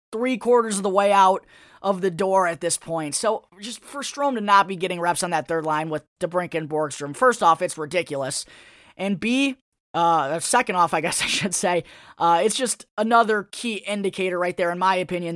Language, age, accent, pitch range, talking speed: English, 20-39, American, 180-230 Hz, 205 wpm